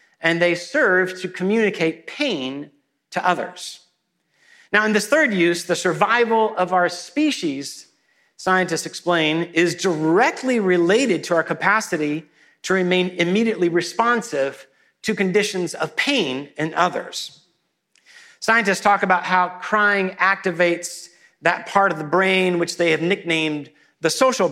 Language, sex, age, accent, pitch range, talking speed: English, male, 50-69, American, 165-205 Hz, 130 wpm